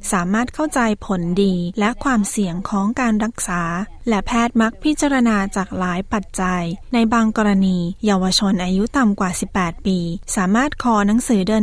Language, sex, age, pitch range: Thai, female, 20-39, 195-225 Hz